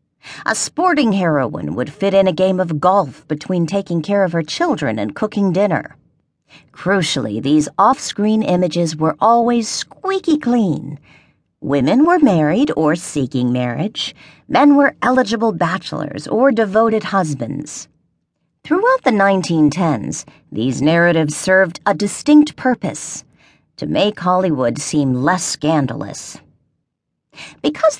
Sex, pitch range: female, 150-220 Hz